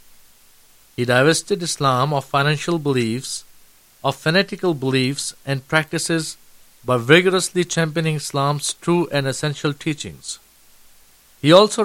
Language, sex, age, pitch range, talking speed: Urdu, male, 50-69, 125-155 Hz, 105 wpm